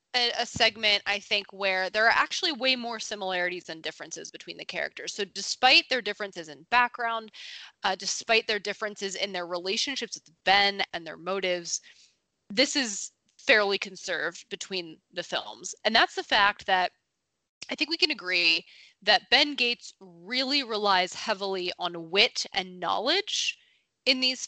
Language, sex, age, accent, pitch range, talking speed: English, female, 20-39, American, 185-245 Hz, 155 wpm